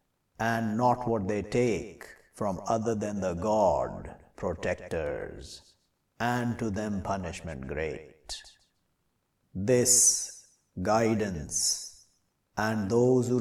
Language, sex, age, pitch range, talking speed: English, male, 50-69, 105-125 Hz, 90 wpm